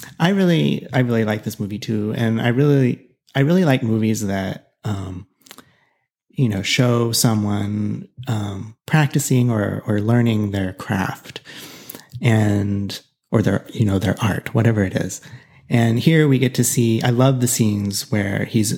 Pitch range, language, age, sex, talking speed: 105-130 Hz, English, 30-49, male, 160 wpm